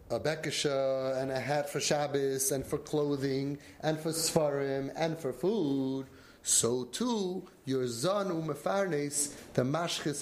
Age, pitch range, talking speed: 30-49, 140-190 Hz, 140 wpm